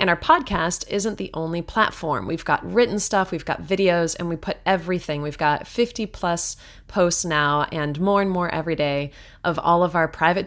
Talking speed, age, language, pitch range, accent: 200 wpm, 30-49, English, 150-185 Hz, American